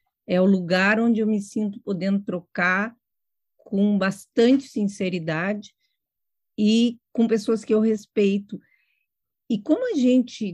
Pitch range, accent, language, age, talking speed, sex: 190-230 Hz, Brazilian, Portuguese, 50-69, 125 wpm, female